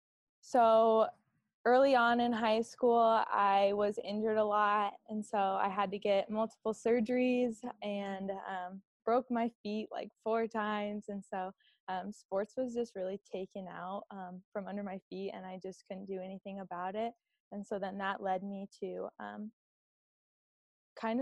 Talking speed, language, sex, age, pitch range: 165 wpm, English, female, 20-39, 195-225 Hz